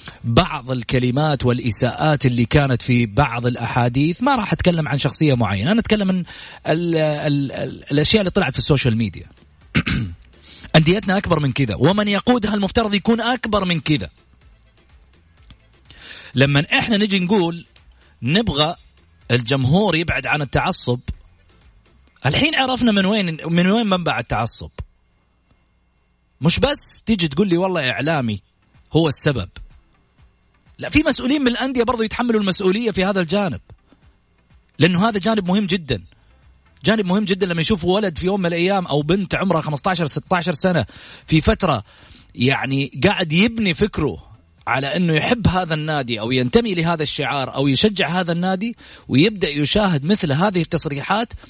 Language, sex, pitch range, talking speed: Arabic, male, 125-200 Hz, 135 wpm